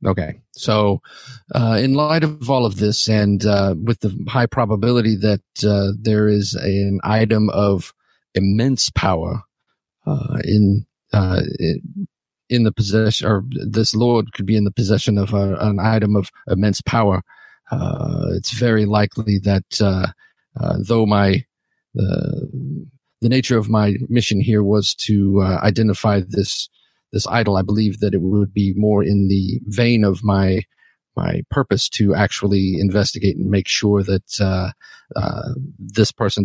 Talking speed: 155 wpm